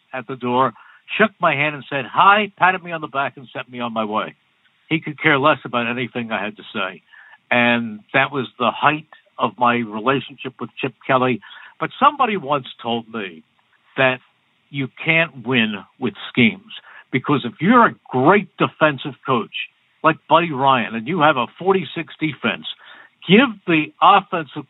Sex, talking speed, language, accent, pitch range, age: male, 170 wpm, English, American, 130-175 Hz, 60-79